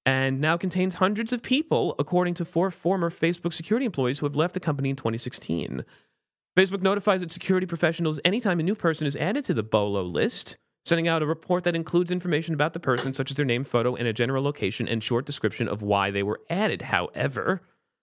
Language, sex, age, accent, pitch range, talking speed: English, male, 30-49, American, 140-185 Hz, 210 wpm